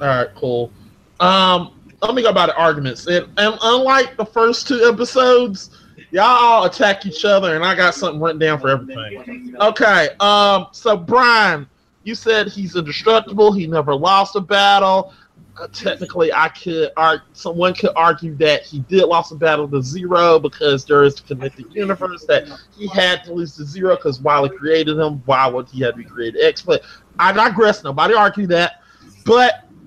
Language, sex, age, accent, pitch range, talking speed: English, male, 20-39, American, 145-200 Hz, 185 wpm